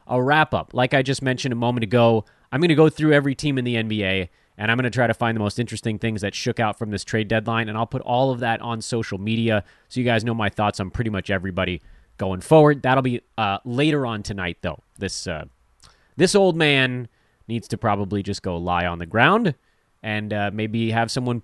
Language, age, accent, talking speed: English, 30-49, American, 235 wpm